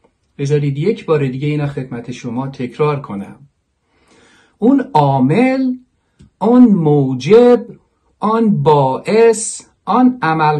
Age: 50-69